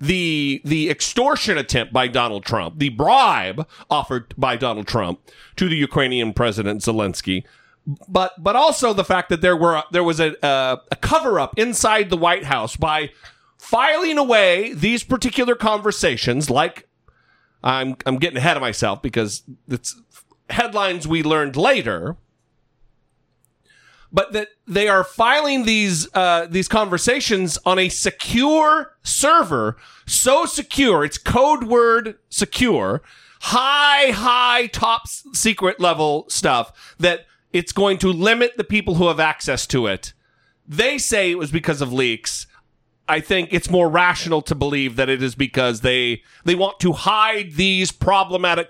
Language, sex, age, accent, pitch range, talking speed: English, male, 40-59, American, 140-215 Hz, 145 wpm